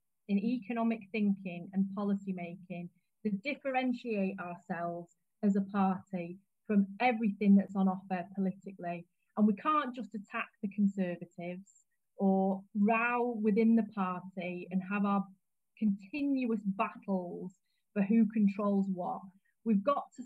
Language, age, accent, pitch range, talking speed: English, 30-49, British, 190-225 Hz, 125 wpm